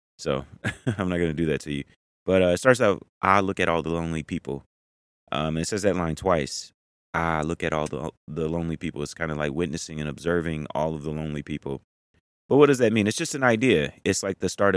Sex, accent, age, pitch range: male, American, 30-49, 75-95 Hz